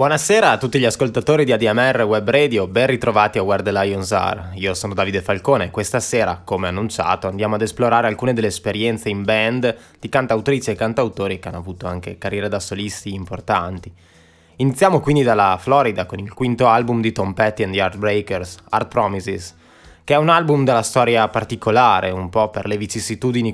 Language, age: Italian, 20-39